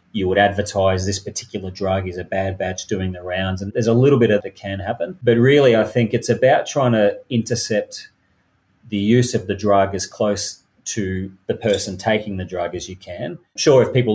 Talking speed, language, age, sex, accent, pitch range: 210 wpm, English, 30-49, male, Australian, 95-110 Hz